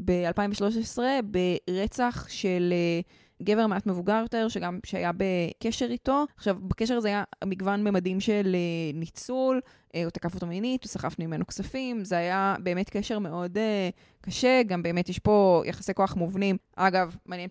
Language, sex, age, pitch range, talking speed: Hebrew, female, 20-39, 180-220 Hz, 140 wpm